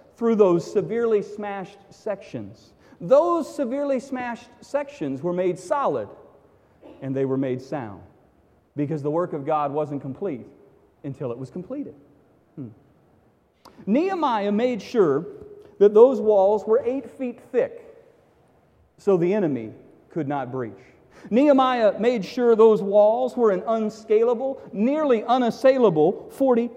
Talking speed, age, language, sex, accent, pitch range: 125 wpm, 40-59, English, male, American, 170-250 Hz